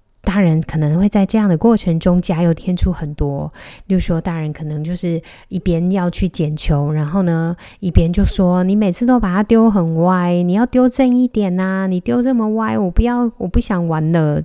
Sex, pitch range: female, 155-195 Hz